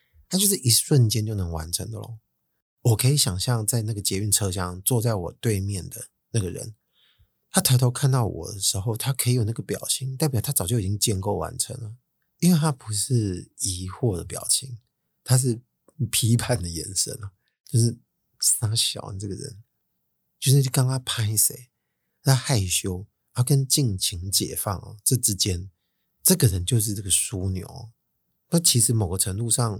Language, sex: Chinese, male